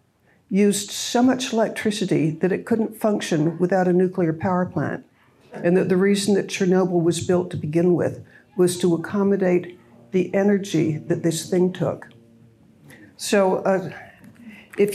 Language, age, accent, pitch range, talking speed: English, 60-79, American, 175-220 Hz, 145 wpm